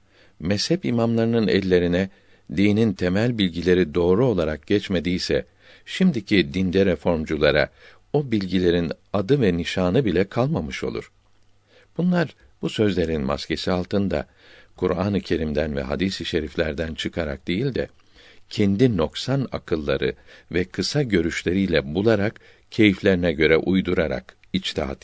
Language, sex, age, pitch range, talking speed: Turkish, male, 60-79, 85-110 Hz, 110 wpm